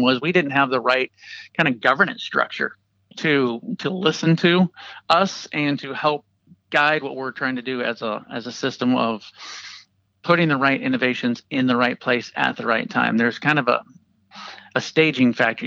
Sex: male